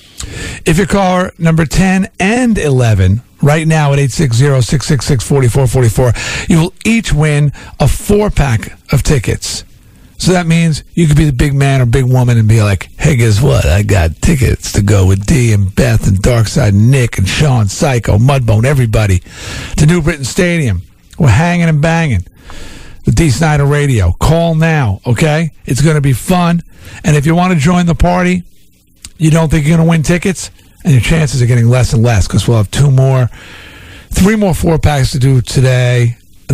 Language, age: English, 50-69